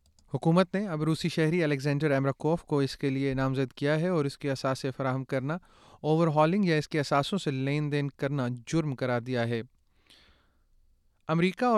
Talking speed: 180 wpm